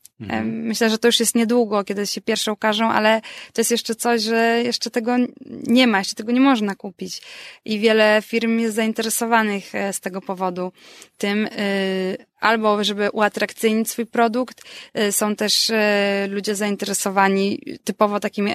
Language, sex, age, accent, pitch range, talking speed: Polish, female, 20-39, native, 195-220 Hz, 145 wpm